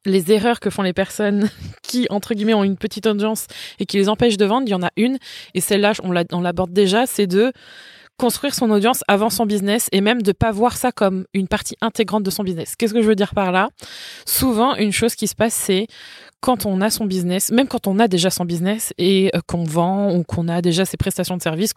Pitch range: 195-235 Hz